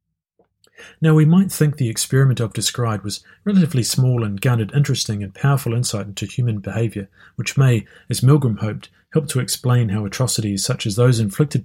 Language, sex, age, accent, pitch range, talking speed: English, male, 40-59, Australian, 110-135 Hz, 175 wpm